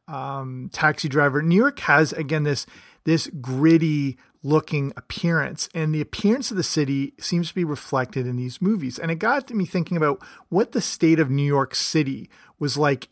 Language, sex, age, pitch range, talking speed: English, male, 30-49, 135-165 Hz, 185 wpm